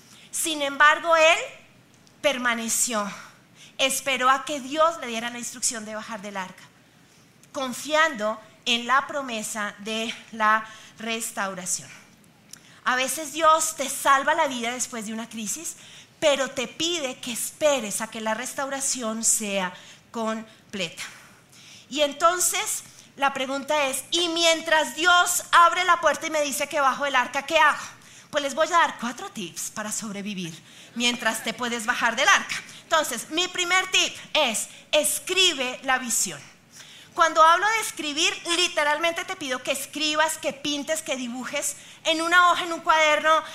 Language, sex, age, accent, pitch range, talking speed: Spanish, female, 30-49, Colombian, 235-320 Hz, 145 wpm